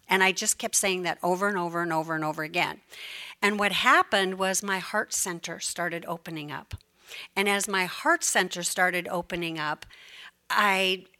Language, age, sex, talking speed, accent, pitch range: English, 50-69, female, 175 wpm, American, 175-210 Hz